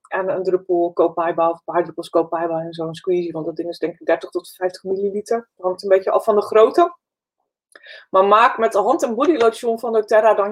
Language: Dutch